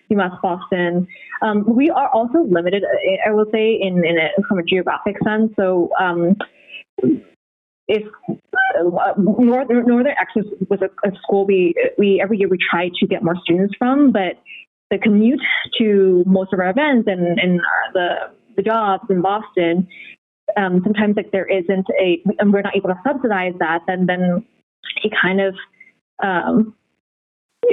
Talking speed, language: 155 wpm, English